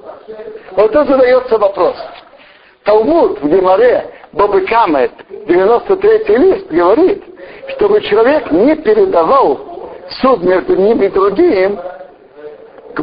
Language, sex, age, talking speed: Russian, male, 60-79, 100 wpm